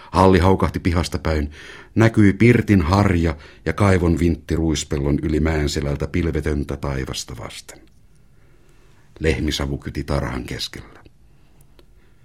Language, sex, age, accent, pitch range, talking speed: Finnish, male, 60-79, native, 70-90 Hz, 100 wpm